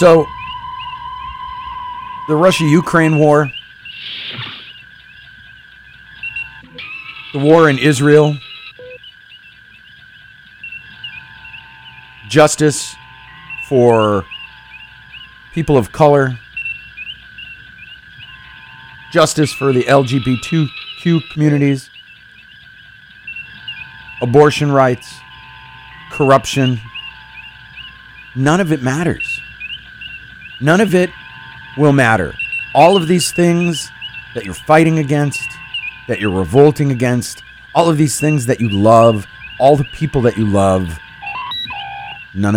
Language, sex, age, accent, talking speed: English, male, 50-69, American, 80 wpm